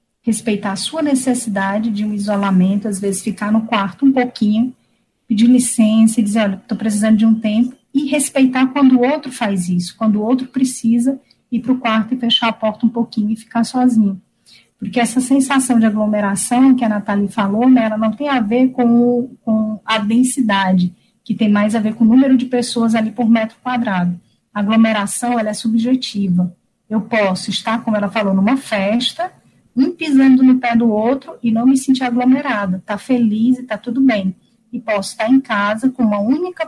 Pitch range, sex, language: 205-250 Hz, female, Portuguese